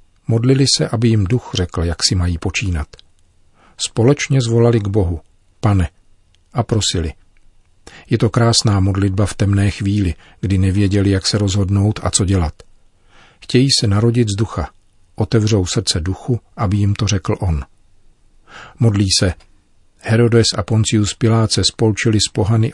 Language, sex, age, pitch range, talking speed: Czech, male, 50-69, 95-110 Hz, 145 wpm